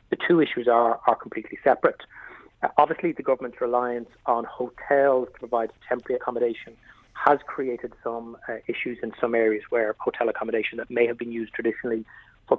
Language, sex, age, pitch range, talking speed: English, male, 30-49, 115-135 Hz, 170 wpm